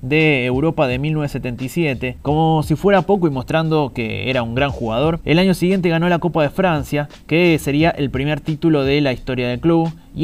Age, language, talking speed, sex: 20-39, Spanish, 200 wpm, male